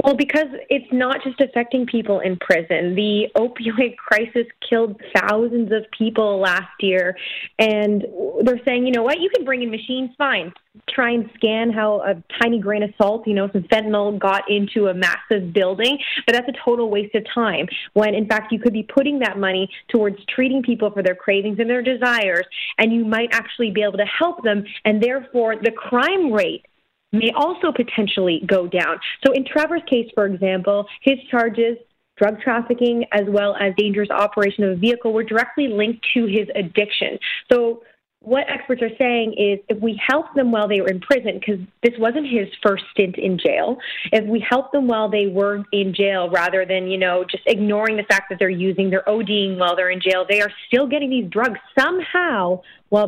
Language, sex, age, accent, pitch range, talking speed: English, female, 20-39, American, 200-245 Hz, 195 wpm